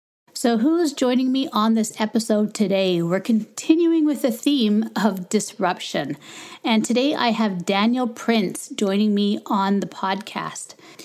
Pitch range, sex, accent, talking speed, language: 185-235 Hz, female, American, 140 wpm, English